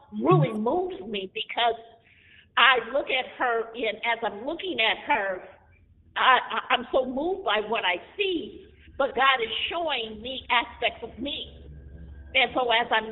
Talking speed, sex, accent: 160 wpm, female, American